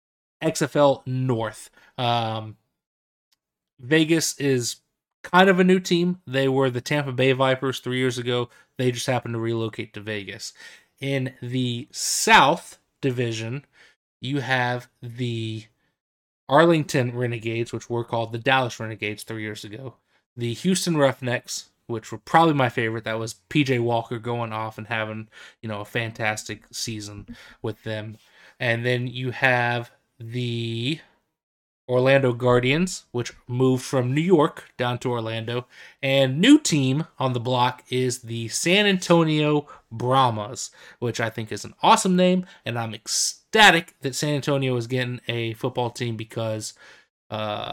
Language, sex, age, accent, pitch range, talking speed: English, male, 20-39, American, 115-135 Hz, 140 wpm